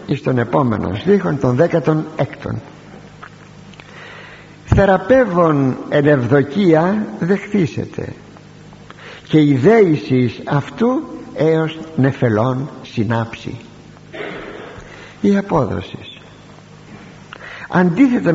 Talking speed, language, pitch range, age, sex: 60 wpm, Greek, 120-165 Hz, 60-79, male